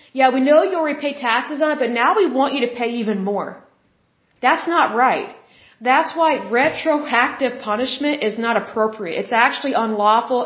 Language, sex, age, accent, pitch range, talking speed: Bengali, female, 30-49, American, 215-260 Hz, 170 wpm